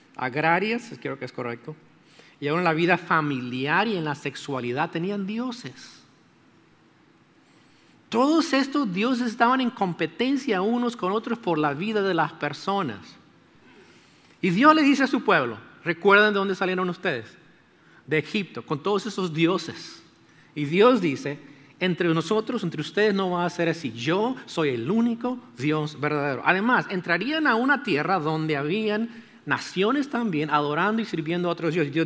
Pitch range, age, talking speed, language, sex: 160-230 Hz, 40-59, 160 wpm, English, male